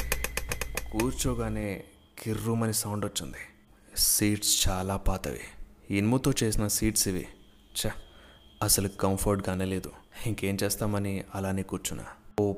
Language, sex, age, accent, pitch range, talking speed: Telugu, male, 20-39, native, 90-110 Hz, 100 wpm